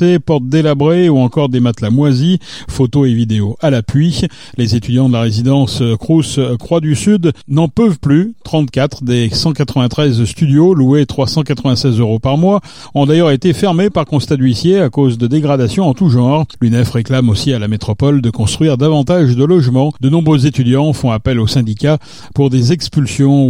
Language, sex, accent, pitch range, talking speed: French, male, French, 125-160 Hz, 170 wpm